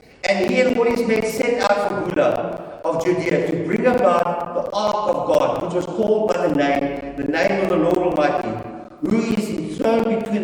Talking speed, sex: 200 wpm, male